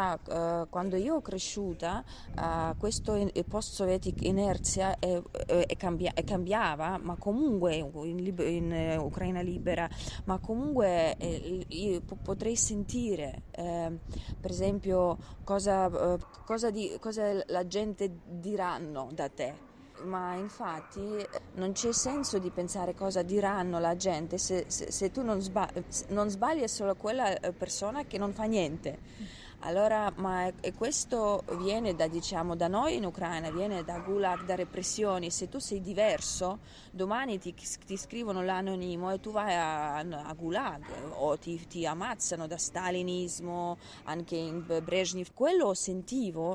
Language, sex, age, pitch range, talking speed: Italian, female, 20-39, 175-205 Hz, 135 wpm